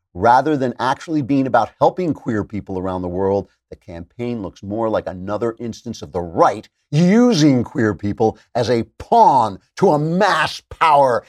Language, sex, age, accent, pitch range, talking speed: English, male, 50-69, American, 105-145 Hz, 160 wpm